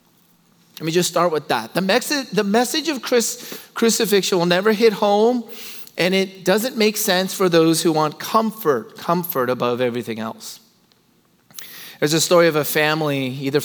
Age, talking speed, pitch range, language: 30-49, 160 wpm, 135-190 Hz, English